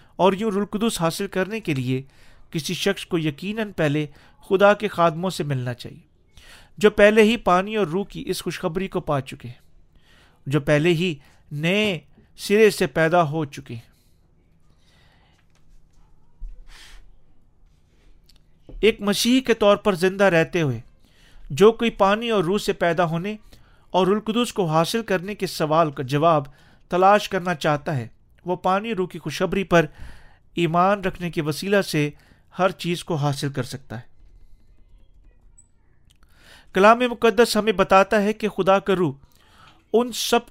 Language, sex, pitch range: Urdu, male, 140-200 Hz